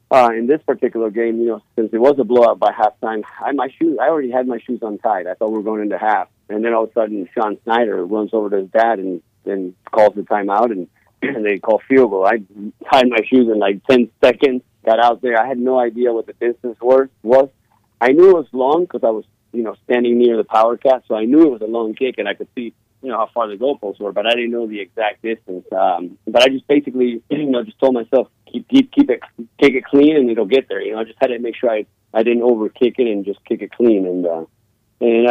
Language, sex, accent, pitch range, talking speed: English, male, American, 105-125 Hz, 270 wpm